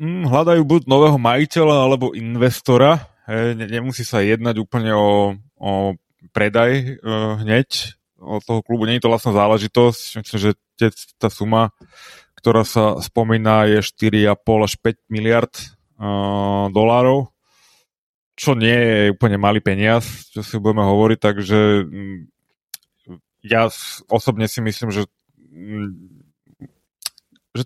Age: 20-39